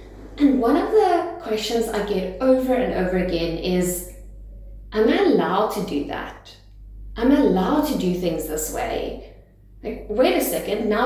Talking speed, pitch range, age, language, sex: 170 wpm, 190-260 Hz, 20-39, English, female